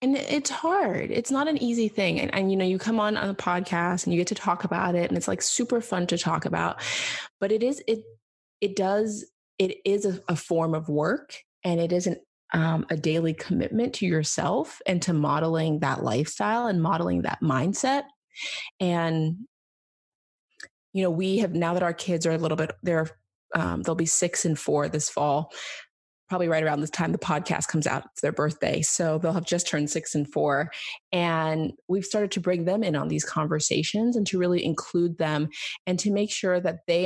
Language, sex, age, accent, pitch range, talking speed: English, female, 20-39, American, 160-200 Hz, 200 wpm